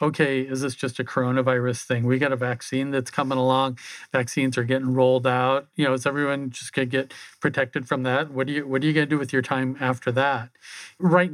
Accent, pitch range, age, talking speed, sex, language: American, 130-145 Hz, 40-59, 230 wpm, male, English